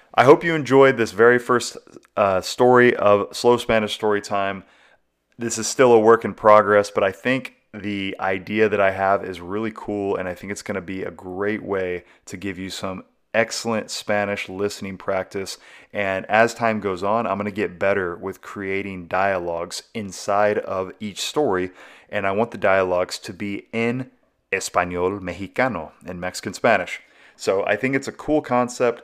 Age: 30-49